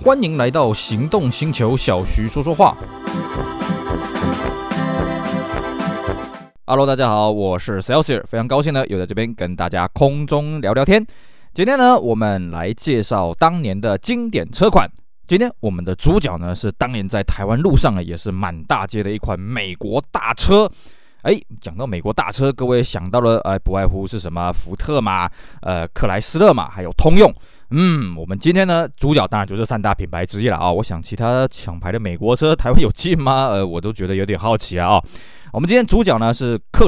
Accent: native